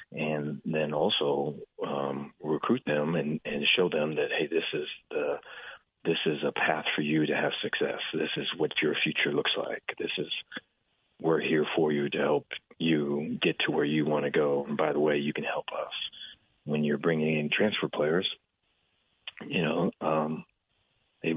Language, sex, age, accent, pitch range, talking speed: English, male, 40-59, American, 75-80 Hz, 185 wpm